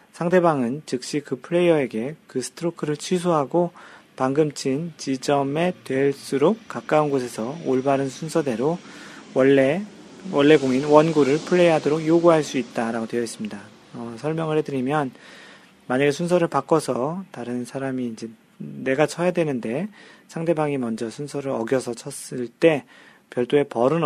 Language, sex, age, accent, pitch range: Korean, male, 40-59, native, 120-155 Hz